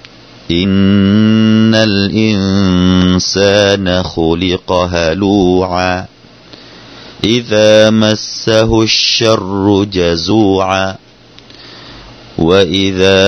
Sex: male